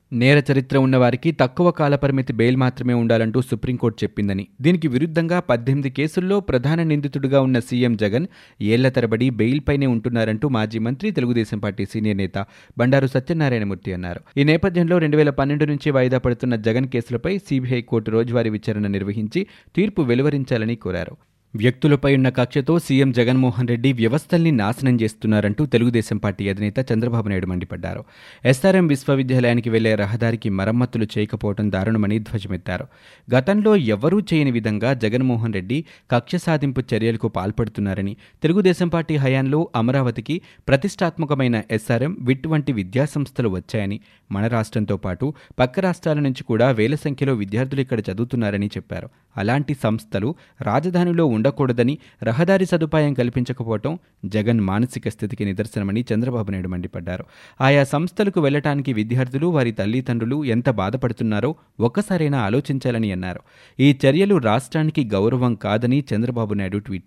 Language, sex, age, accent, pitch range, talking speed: Telugu, male, 30-49, native, 110-145 Hz, 115 wpm